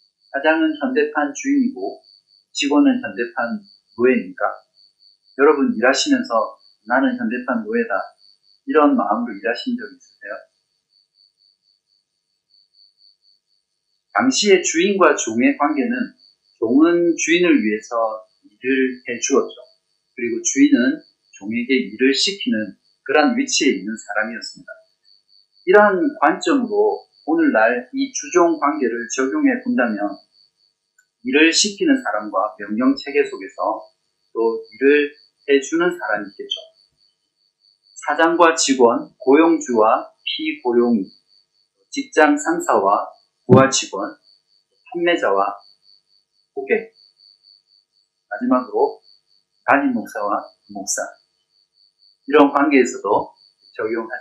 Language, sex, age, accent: Korean, male, 40-59, native